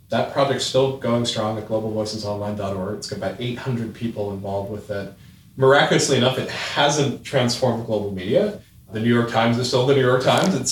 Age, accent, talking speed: 30-49, American, 185 wpm